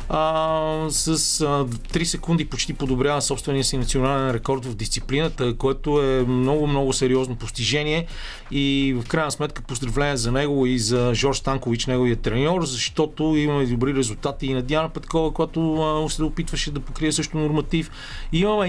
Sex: male